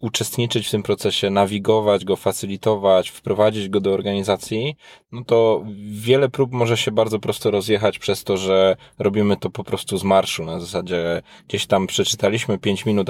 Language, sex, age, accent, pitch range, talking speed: Polish, male, 20-39, native, 95-110 Hz, 165 wpm